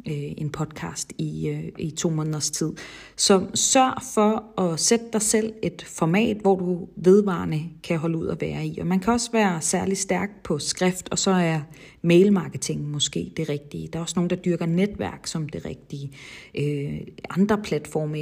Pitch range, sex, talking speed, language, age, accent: 160-210 Hz, female, 175 wpm, Danish, 40-59, native